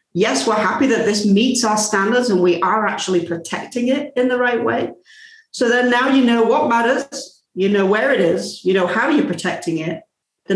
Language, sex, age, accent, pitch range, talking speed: English, female, 40-59, British, 180-245 Hz, 210 wpm